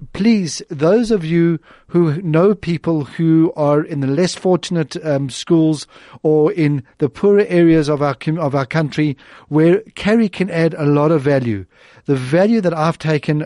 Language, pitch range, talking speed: English, 140-180 Hz, 170 wpm